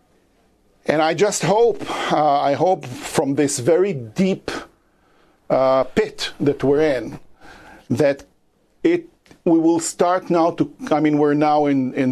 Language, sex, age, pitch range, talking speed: English, male, 50-69, 140-195 Hz, 145 wpm